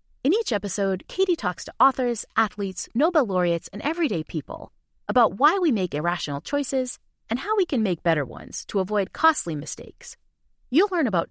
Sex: female